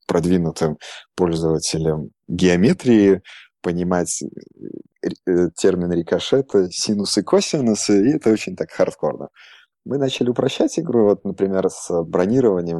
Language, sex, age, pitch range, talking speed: English, male, 20-39, 80-100 Hz, 105 wpm